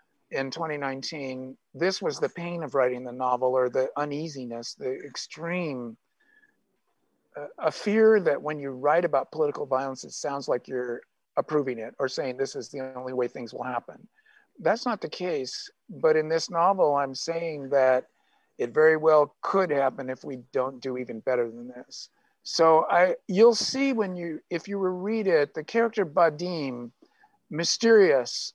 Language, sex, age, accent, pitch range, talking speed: English, male, 50-69, American, 135-190 Hz, 165 wpm